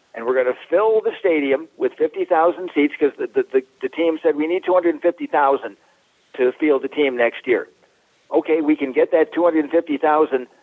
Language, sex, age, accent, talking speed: English, male, 50-69, American, 180 wpm